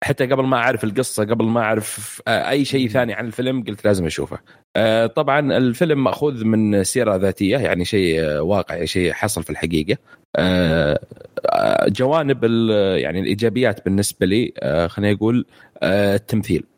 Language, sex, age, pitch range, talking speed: Arabic, male, 30-49, 95-120 Hz, 130 wpm